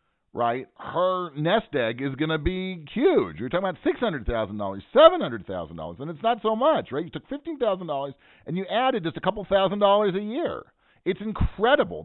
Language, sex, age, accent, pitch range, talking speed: English, male, 40-59, American, 135-210 Hz, 175 wpm